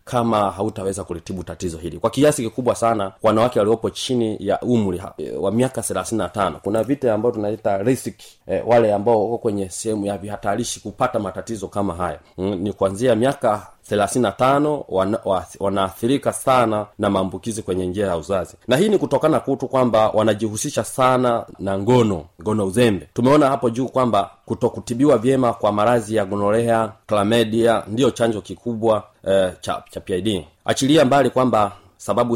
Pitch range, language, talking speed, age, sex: 95-115 Hz, Swahili, 150 wpm, 30-49, male